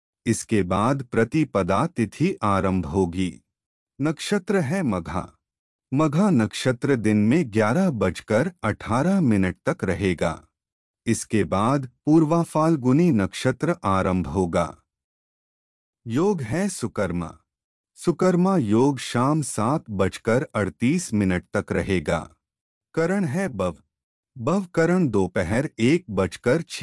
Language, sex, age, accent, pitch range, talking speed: Hindi, male, 30-49, native, 95-155 Hz, 100 wpm